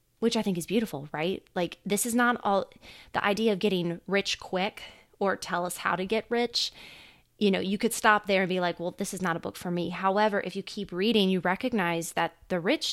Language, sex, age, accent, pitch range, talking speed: English, female, 20-39, American, 175-205 Hz, 235 wpm